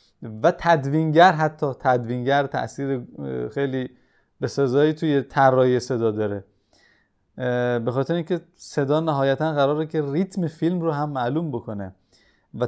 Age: 20-39